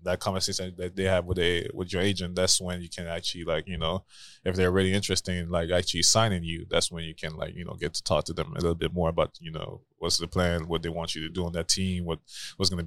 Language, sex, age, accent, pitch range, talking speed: English, male, 20-39, American, 85-95 Hz, 290 wpm